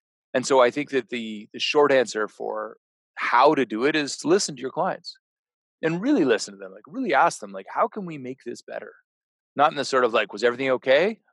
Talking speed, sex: 240 wpm, male